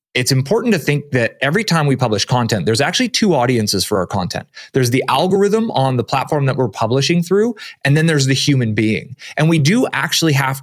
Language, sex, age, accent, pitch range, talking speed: English, male, 30-49, American, 120-155 Hz, 215 wpm